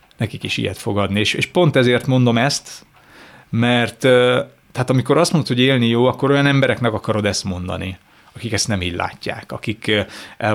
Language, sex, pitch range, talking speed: Hungarian, male, 100-130 Hz, 175 wpm